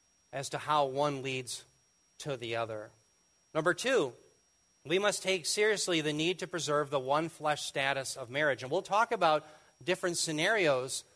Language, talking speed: English, 160 wpm